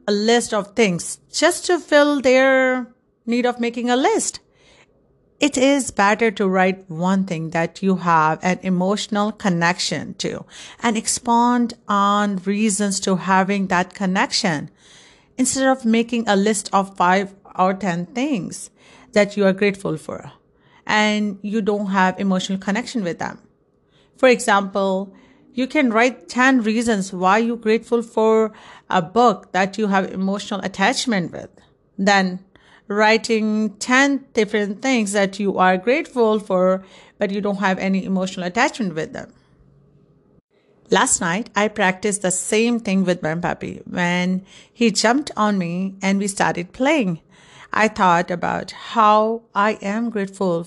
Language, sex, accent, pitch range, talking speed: English, female, Indian, 190-235 Hz, 145 wpm